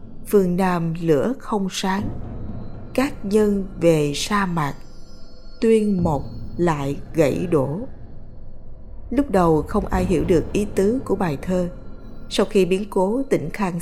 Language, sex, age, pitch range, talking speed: Vietnamese, female, 20-39, 150-210 Hz, 140 wpm